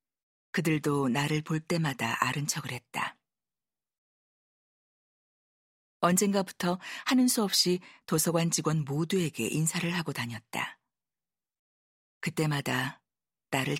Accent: native